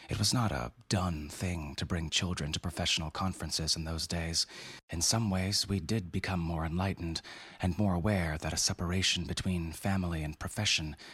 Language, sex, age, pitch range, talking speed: English, male, 30-49, 80-95 Hz, 180 wpm